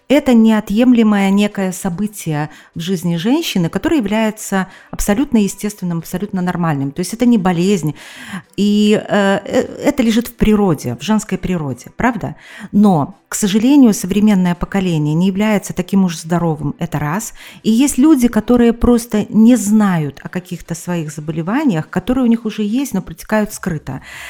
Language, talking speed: Russian, 145 wpm